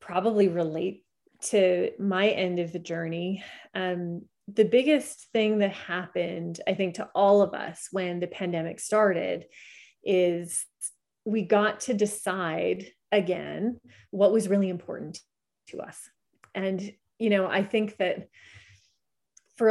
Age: 30-49